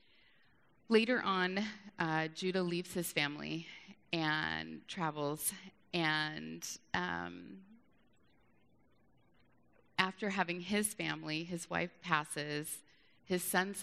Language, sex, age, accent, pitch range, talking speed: English, female, 30-49, American, 150-175 Hz, 85 wpm